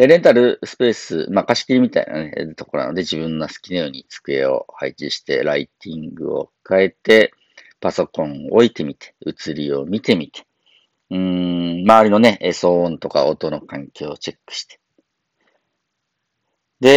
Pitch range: 80-115 Hz